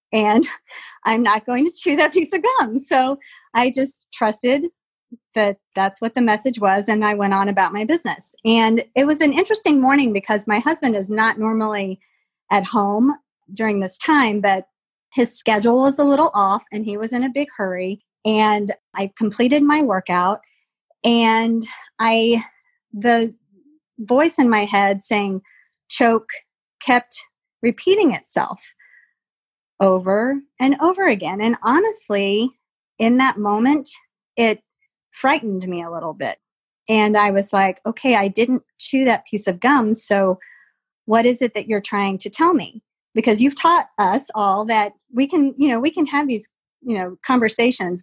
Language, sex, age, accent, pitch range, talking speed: English, female, 30-49, American, 205-270 Hz, 160 wpm